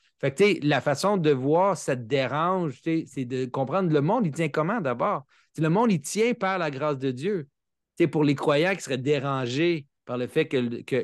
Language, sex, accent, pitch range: French, male, Canadian, 135-175 Hz